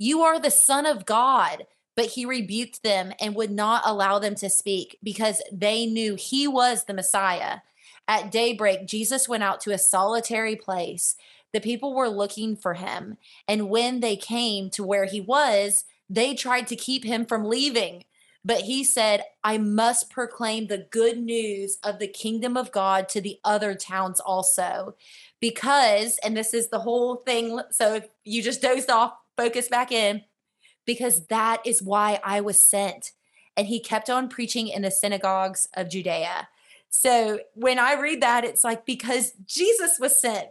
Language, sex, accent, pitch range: English, female, American, 200-240 Hz